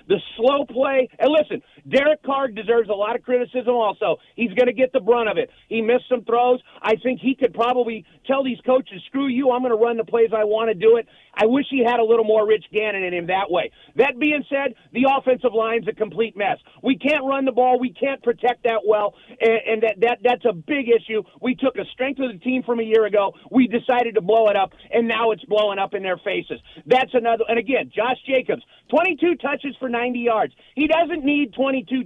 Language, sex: English, male